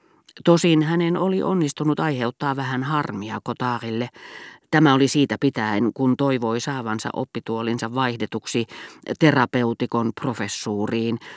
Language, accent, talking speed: Finnish, native, 100 wpm